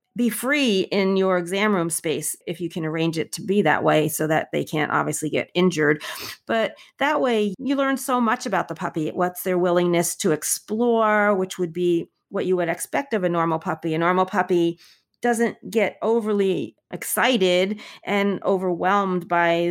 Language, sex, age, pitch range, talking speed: English, female, 40-59, 165-210 Hz, 180 wpm